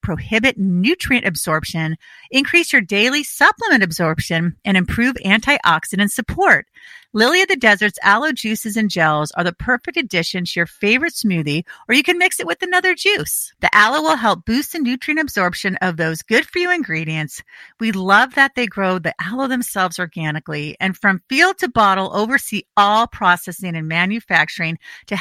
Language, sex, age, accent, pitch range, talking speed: English, female, 40-59, American, 175-270 Hz, 165 wpm